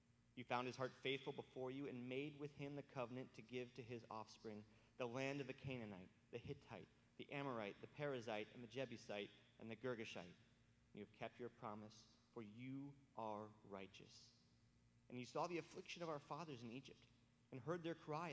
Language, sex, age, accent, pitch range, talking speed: English, male, 30-49, American, 115-140 Hz, 190 wpm